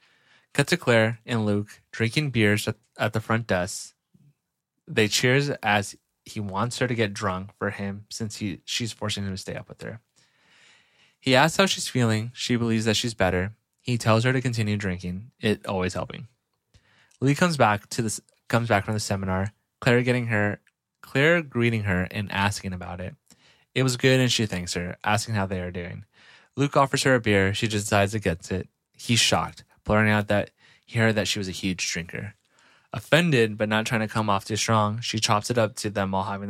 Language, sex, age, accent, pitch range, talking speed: English, male, 20-39, American, 95-120 Hz, 200 wpm